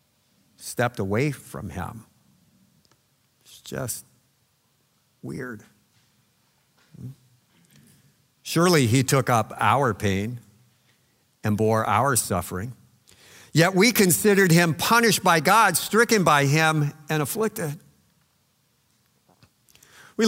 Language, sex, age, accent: English, male, 50-69, American